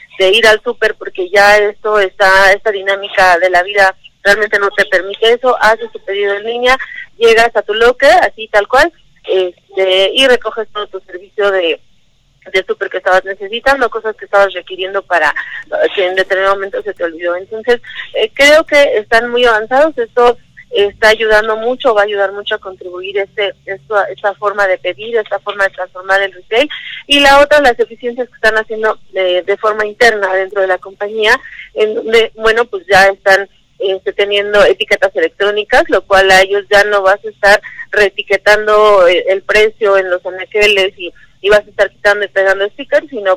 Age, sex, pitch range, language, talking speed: 30-49, female, 190-225 Hz, Spanish, 185 wpm